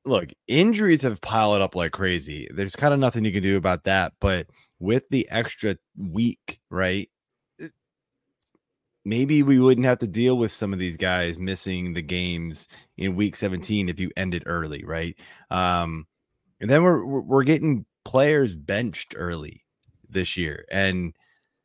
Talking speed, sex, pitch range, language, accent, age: 160 wpm, male, 95-135 Hz, English, American, 20-39